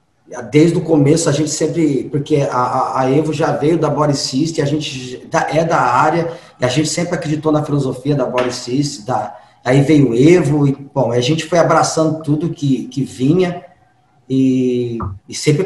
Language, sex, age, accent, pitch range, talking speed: Portuguese, male, 20-39, Brazilian, 130-160 Hz, 180 wpm